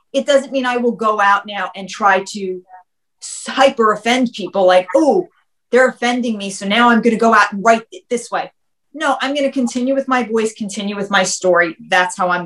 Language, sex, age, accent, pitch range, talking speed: English, female, 30-49, American, 185-235 Hz, 220 wpm